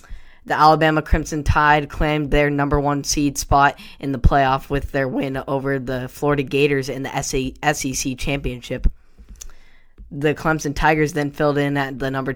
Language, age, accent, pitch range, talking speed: English, 10-29, American, 130-145 Hz, 160 wpm